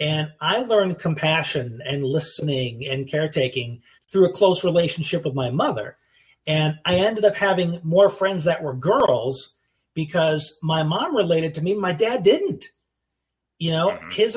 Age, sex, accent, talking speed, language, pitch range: 40-59, male, American, 155 wpm, English, 140-185 Hz